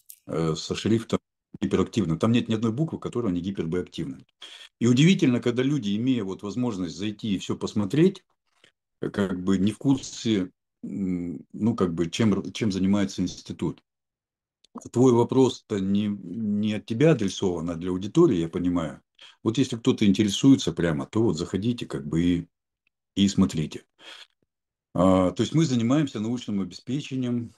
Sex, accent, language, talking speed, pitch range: male, native, Russian, 140 wpm, 90-120 Hz